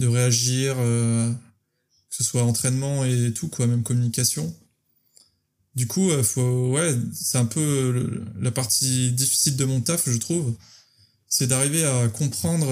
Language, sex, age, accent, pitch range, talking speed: French, male, 20-39, French, 115-140 Hz, 150 wpm